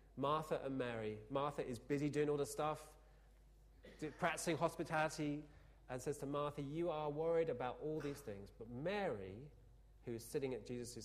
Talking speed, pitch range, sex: 165 wpm, 115-165 Hz, male